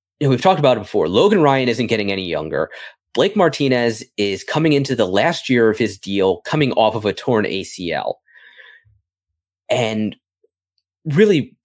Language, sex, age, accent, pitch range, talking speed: English, male, 20-39, American, 105-150 Hz, 165 wpm